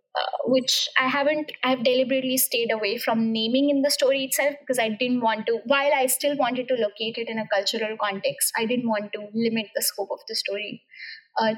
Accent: Indian